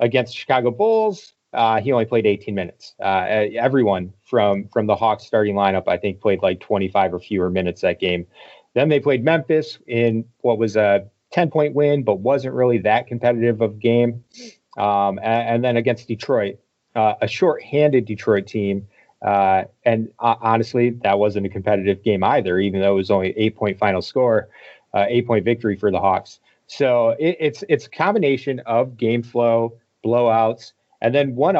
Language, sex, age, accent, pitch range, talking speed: English, male, 30-49, American, 105-135 Hz, 180 wpm